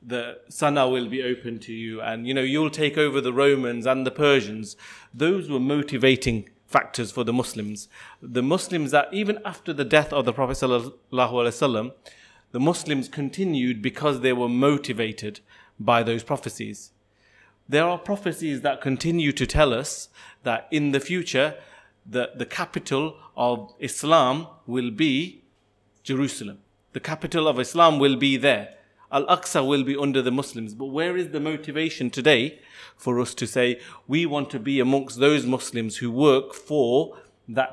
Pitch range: 120-145 Hz